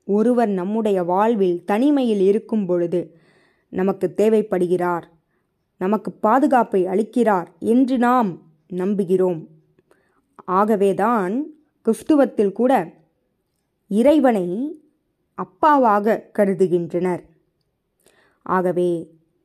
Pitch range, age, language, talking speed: 175-225 Hz, 20-39, Tamil, 65 wpm